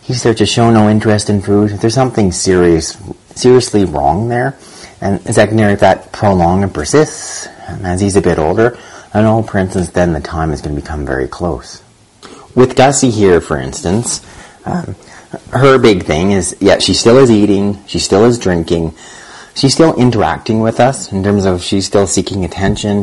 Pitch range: 85-105 Hz